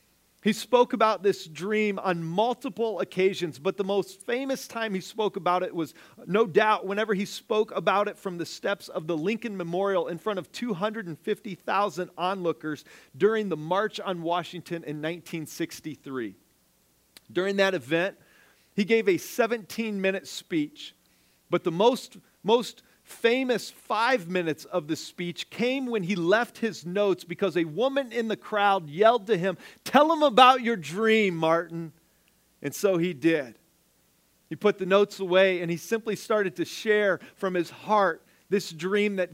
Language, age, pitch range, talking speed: English, 40-59, 170-215 Hz, 160 wpm